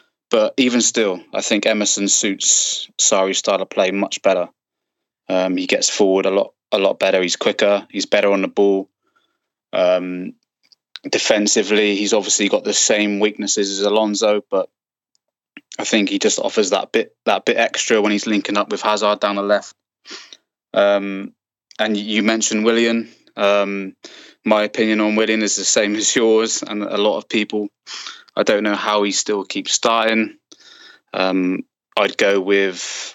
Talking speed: 165 wpm